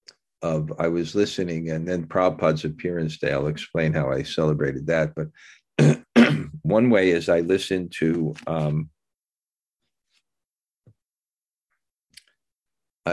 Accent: American